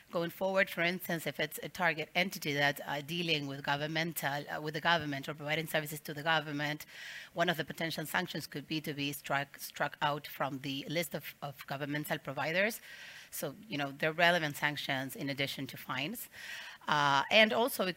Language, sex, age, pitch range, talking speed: Spanish, female, 30-49, 145-185 Hz, 195 wpm